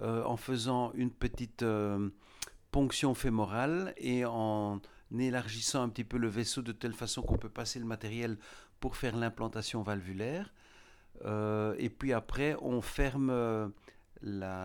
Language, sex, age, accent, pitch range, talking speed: French, male, 60-79, French, 110-140 Hz, 145 wpm